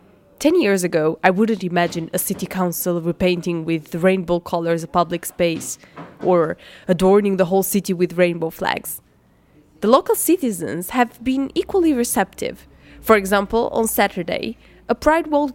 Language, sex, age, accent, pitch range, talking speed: French, female, 20-39, Brazilian, 180-230 Hz, 145 wpm